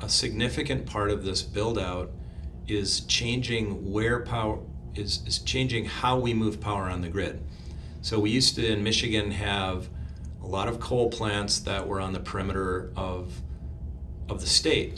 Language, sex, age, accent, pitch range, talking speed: English, male, 40-59, American, 90-110 Hz, 165 wpm